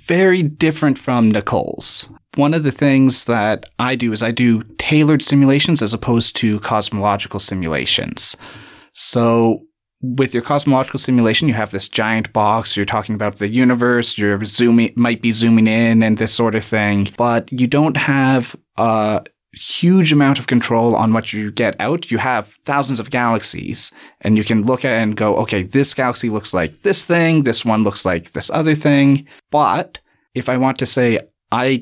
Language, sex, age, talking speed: English, male, 30-49, 180 wpm